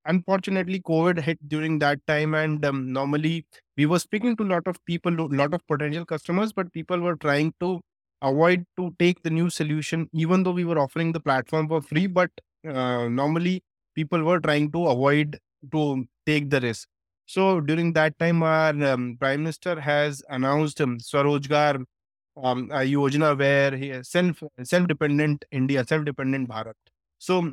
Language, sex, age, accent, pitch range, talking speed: English, male, 20-39, Indian, 135-170 Hz, 160 wpm